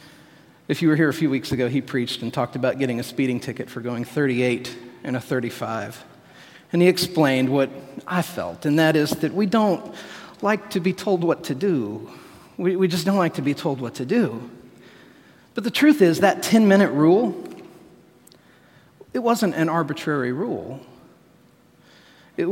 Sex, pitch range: male, 130-175 Hz